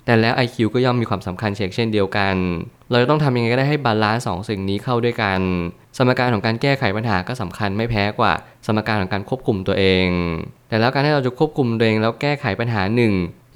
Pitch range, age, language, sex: 100-120 Hz, 20-39, Thai, male